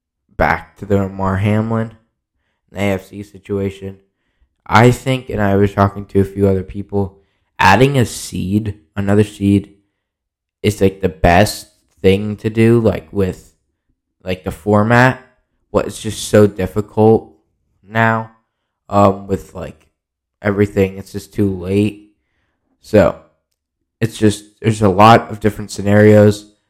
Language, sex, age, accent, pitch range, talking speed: English, male, 10-29, American, 90-105 Hz, 130 wpm